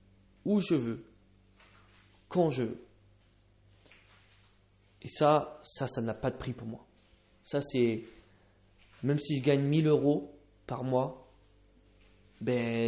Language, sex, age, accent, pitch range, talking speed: English, male, 20-39, French, 105-135 Hz, 125 wpm